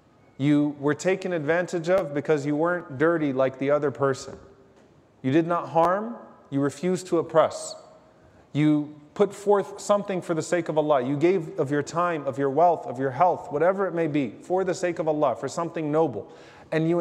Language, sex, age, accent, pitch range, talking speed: English, male, 30-49, American, 145-195 Hz, 195 wpm